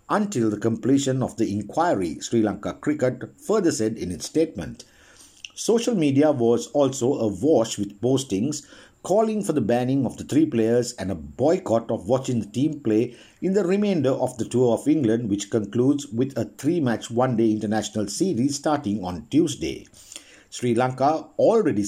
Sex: male